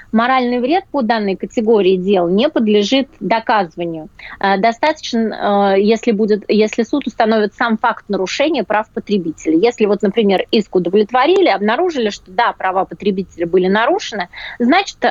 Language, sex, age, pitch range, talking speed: Russian, female, 20-39, 200-255 Hz, 125 wpm